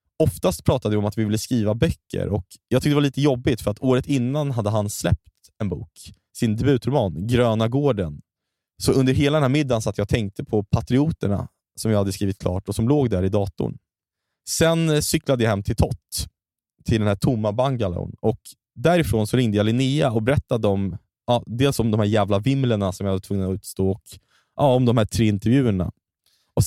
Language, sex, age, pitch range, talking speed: Swedish, male, 20-39, 100-140 Hz, 205 wpm